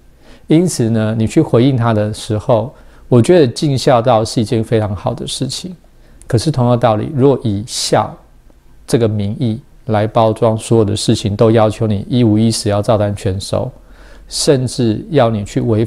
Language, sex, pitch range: Chinese, male, 110-130 Hz